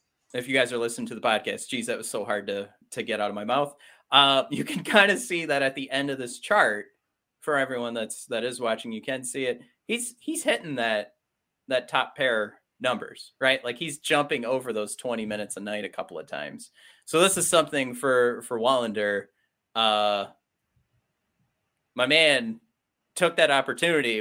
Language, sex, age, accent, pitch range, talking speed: English, male, 30-49, American, 115-150 Hz, 195 wpm